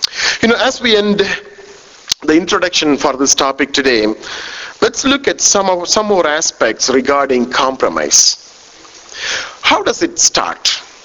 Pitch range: 135-210 Hz